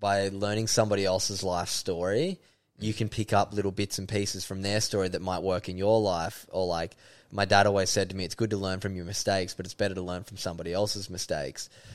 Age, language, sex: 10-29, English, male